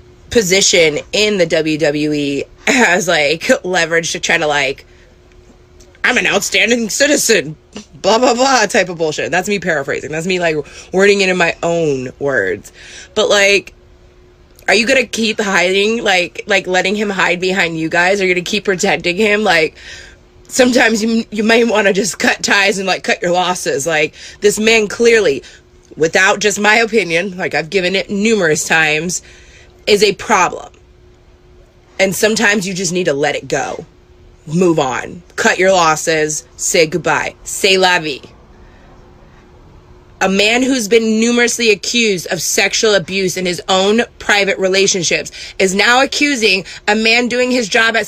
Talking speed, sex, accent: 160 wpm, female, American